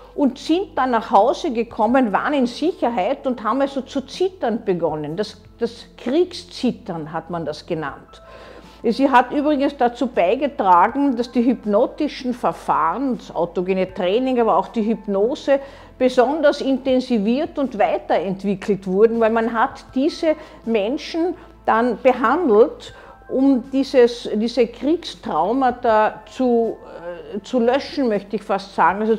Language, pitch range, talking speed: German, 220-285 Hz, 130 wpm